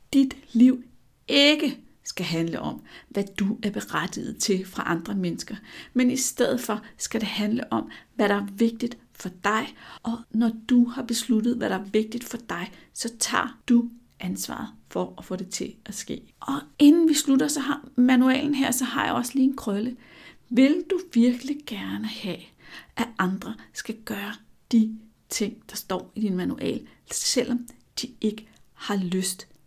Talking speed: 175 wpm